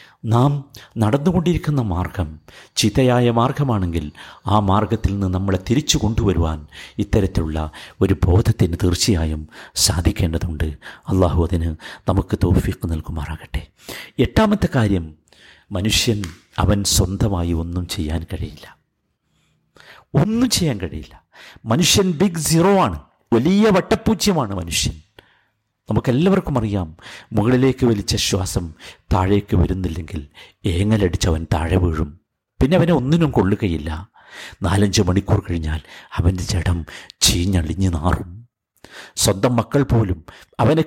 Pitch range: 90-145 Hz